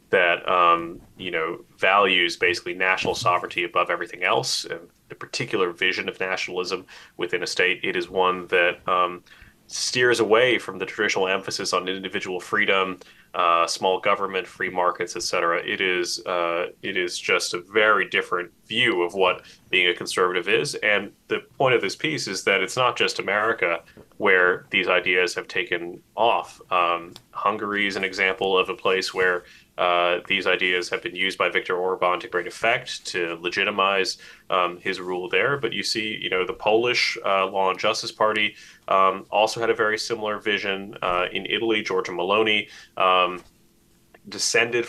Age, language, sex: 30-49, English, male